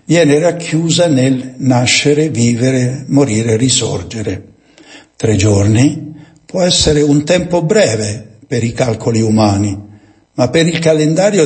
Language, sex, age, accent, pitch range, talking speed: Italian, male, 60-79, native, 105-150 Hz, 115 wpm